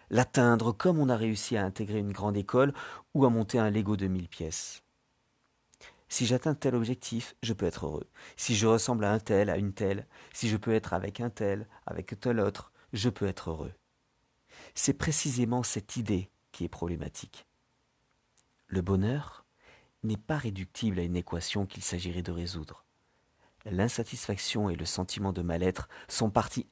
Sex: male